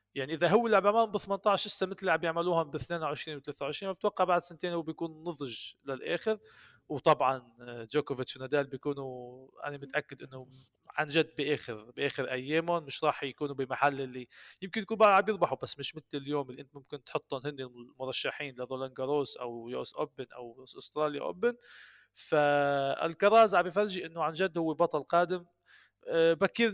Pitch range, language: 135-175 Hz, Arabic